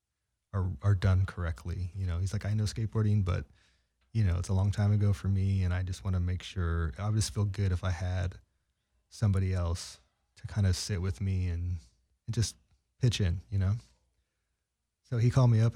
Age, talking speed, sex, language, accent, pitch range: 30-49, 215 wpm, male, English, American, 90-110 Hz